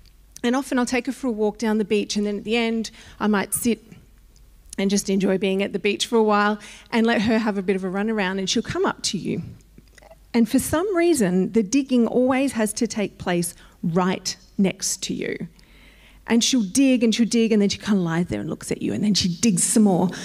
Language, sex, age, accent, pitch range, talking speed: English, female, 40-59, Australian, 195-235 Hz, 245 wpm